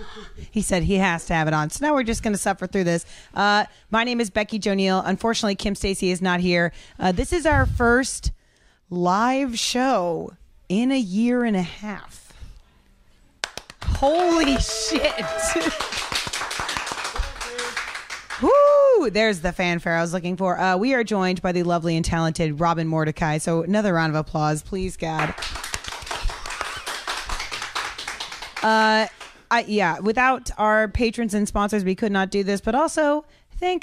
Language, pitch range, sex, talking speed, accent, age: English, 180-240 Hz, female, 150 wpm, American, 30-49